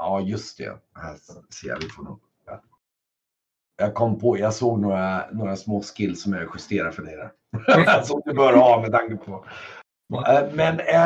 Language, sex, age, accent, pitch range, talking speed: Swedish, male, 60-79, native, 95-135 Hz, 170 wpm